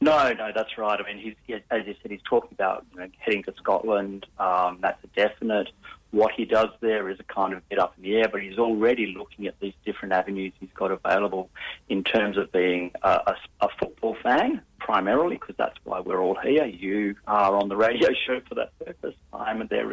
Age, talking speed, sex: 30-49, 220 wpm, male